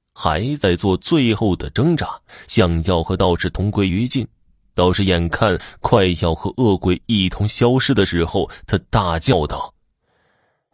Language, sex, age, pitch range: Chinese, male, 20-39, 85-110 Hz